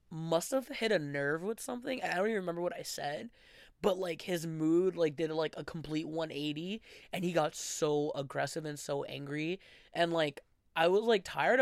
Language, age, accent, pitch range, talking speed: English, 20-39, American, 150-205 Hz, 195 wpm